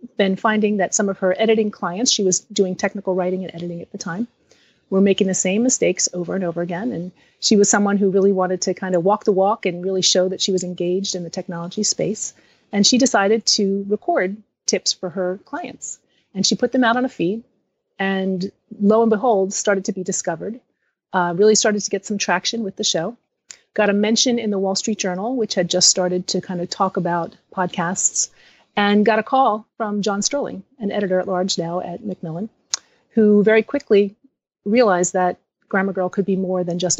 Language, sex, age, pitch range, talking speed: English, female, 30-49, 185-220 Hz, 210 wpm